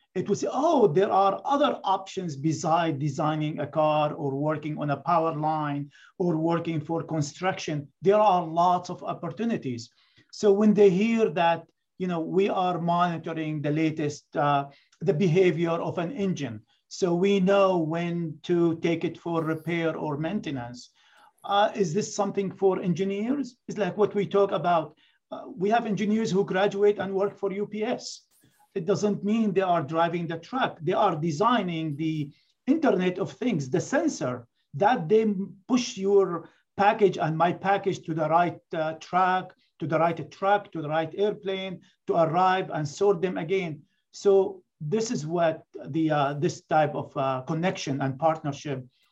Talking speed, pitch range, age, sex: 165 wpm, 160-200 Hz, 50-69, male